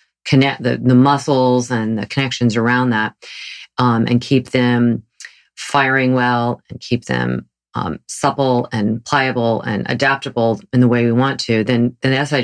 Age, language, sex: 40-59, English, female